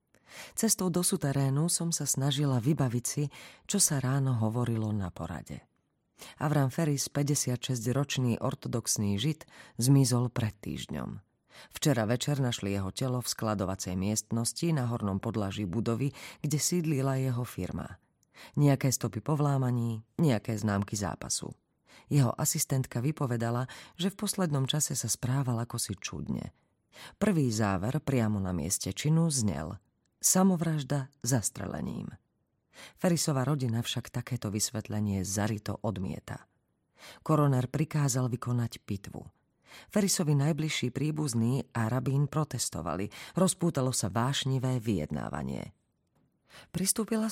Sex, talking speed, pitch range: female, 110 wpm, 110-150 Hz